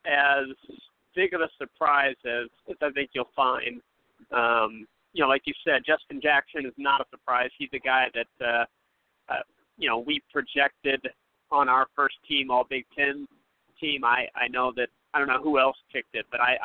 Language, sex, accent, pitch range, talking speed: English, male, American, 125-150 Hz, 200 wpm